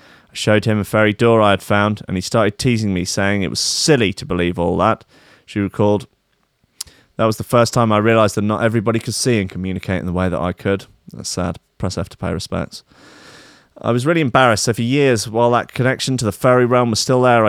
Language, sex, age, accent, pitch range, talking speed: English, male, 30-49, British, 95-120 Hz, 235 wpm